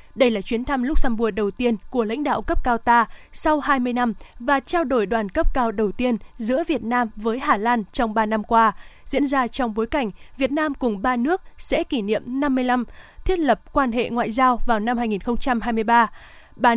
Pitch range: 230-285 Hz